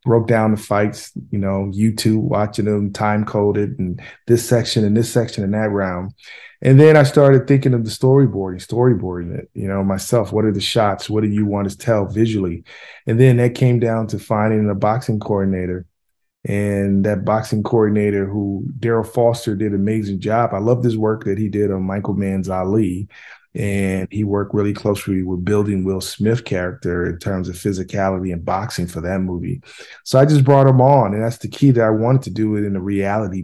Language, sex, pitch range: English, male, 95-115 Hz